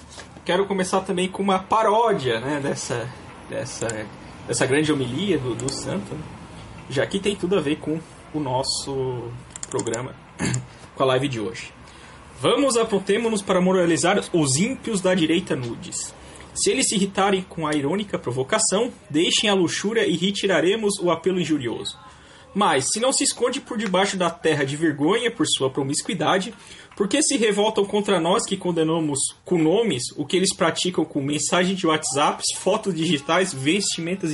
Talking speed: 160 wpm